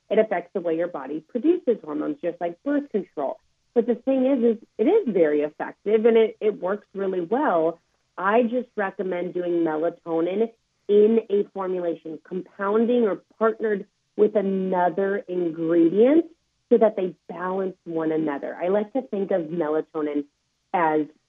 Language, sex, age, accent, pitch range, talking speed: English, female, 30-49, American, 160-220 Hz, 150 wpm